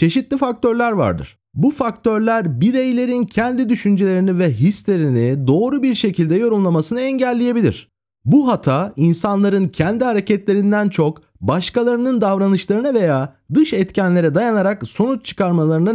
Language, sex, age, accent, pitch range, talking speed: Turkish, male, 40-59, native, 185-245 Hz, 110 wpm